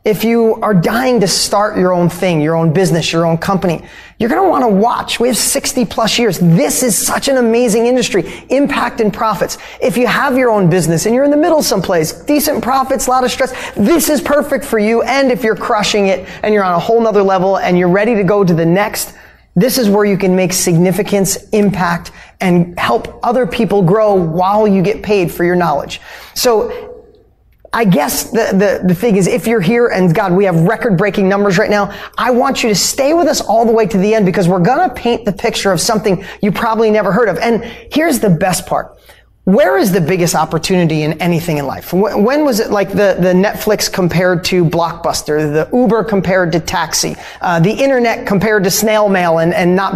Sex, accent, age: male, American, 20-39